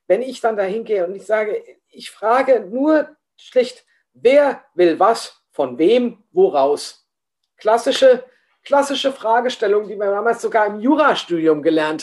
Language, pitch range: German, 175-270 Hz